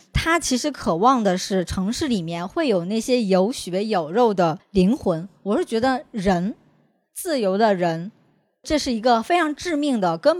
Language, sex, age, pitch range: Chinese, male, 20-39, 190-275 Hz